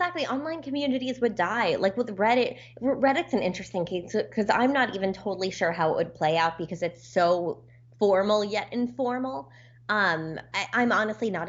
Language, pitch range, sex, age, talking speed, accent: English, 160-215 Hz, female, 20-39, 170 wpm, American